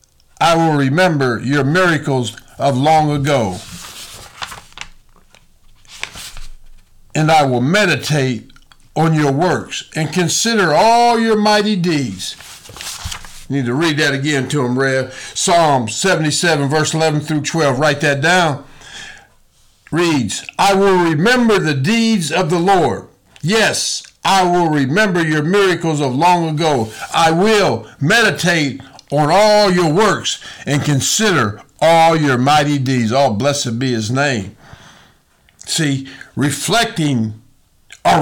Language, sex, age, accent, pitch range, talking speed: English, male, 50-69, American, 130-175 Hz, 125 wpm